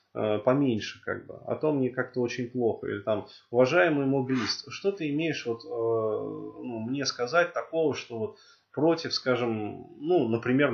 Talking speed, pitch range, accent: 155 wpm, 115-155 Hz, native